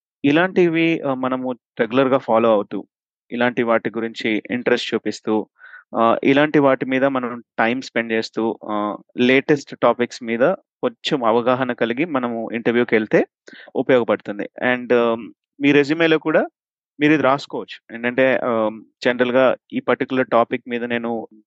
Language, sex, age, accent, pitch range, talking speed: Telugu, male, 30-49, native, 115-130 Hz, 110 wpm